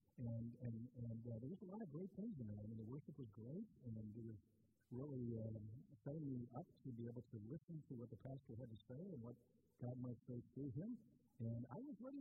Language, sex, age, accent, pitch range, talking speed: English, male, 50-69, American, 115-150 Hz, 245 wpm